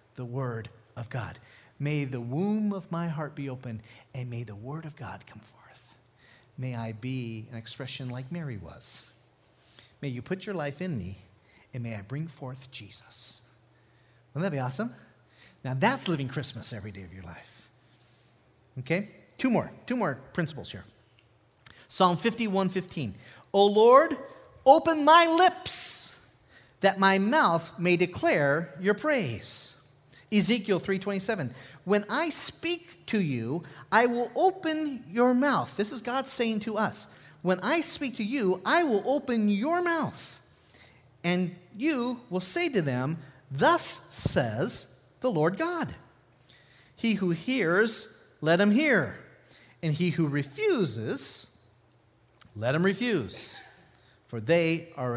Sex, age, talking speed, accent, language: male, 40-59, 140 wpm, American, English